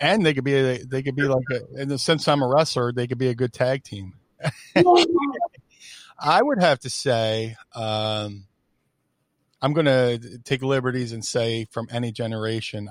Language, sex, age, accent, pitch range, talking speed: English, male, 40-59, American, 110-130 Hz, 175 wpm